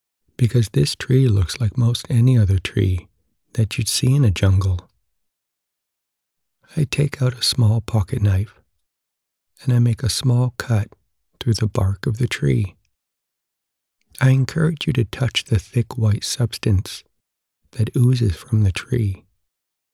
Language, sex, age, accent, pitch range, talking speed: English, male, 60-79, American, 90-120 Hz, 145 wpm